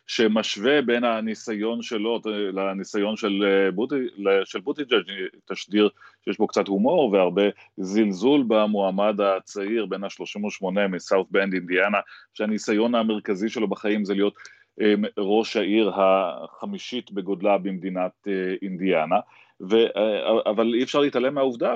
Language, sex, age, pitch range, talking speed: Hebrew, male, 30-49, 95-110 Hz, 110 wpm